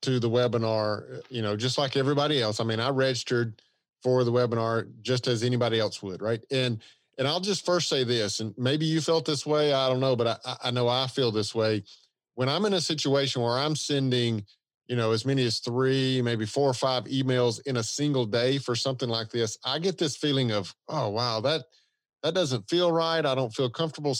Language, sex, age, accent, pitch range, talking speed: English, male, 40-59, American, 120-150 Hz, 220 wpm